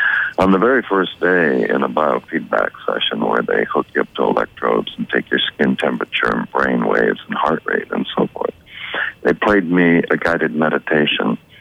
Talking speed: 185 wpm